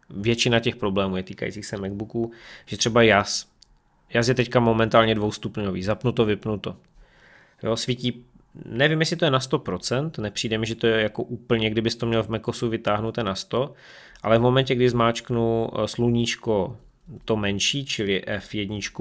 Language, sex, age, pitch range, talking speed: Czech, male, 20-39, 110-125 Hz, 165 wpm